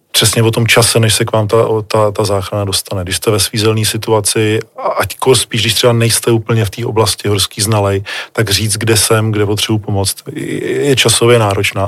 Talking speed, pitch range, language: 195 wpm, 100-115 Hz, Czech